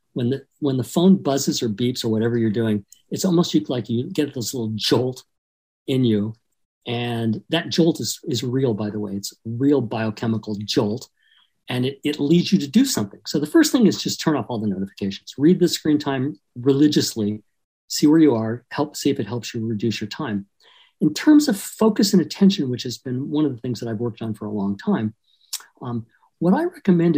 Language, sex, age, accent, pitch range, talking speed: English, male, 50-69, American, 110-155 Hz, 215 wpm